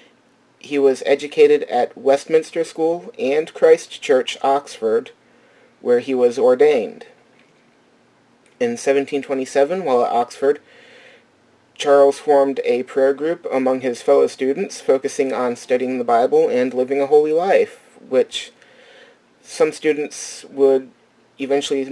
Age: 30-49